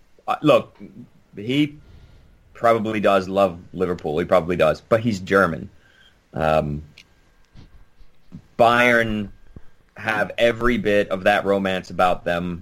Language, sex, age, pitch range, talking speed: English, male, 30-49, 90-105 Hz, 105 wpm